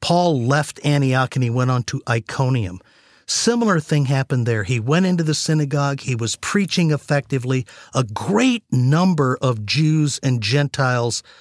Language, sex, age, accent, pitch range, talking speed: English, male, 50-69, American, 125-160 Hz, 155 wpm